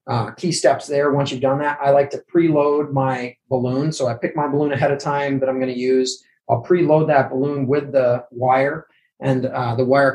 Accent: American